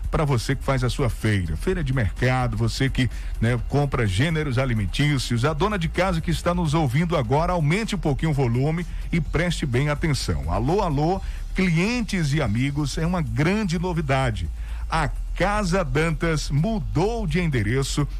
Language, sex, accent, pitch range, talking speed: Portuguese, male, Brazilian, 130-180 Hz, 160 wpm